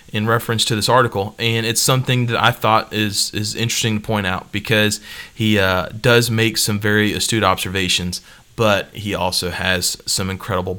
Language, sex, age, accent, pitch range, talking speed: English, male, 30-49, American, 100-115 Hz, 170 wpm